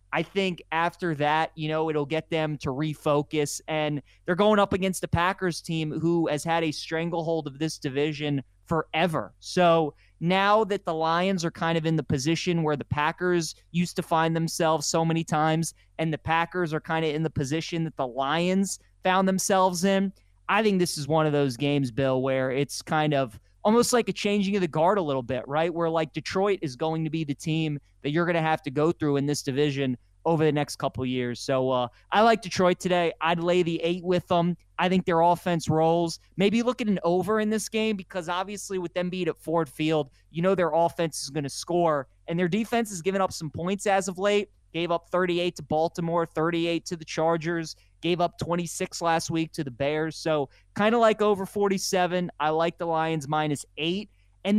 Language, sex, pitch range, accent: English, male, 145-180 Hz, American